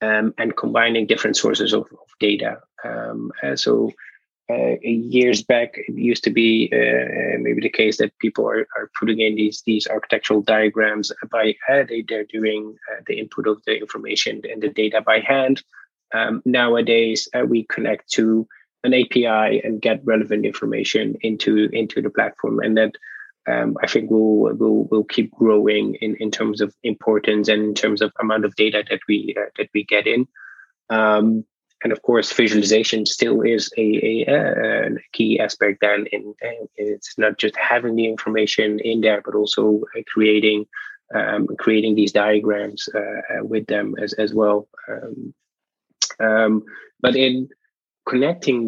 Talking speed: 165 wpm